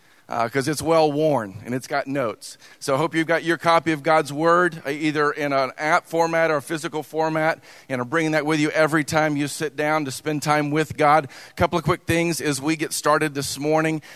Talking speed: 230 wpm